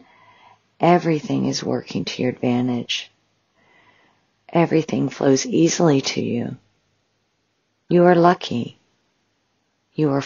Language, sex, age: English, female, 50-69